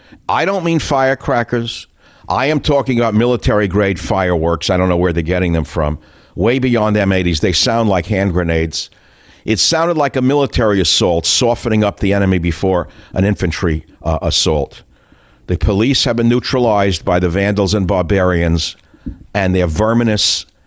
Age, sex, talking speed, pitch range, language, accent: 60-79, male, 155 wpm, 85-120 Hz, English, American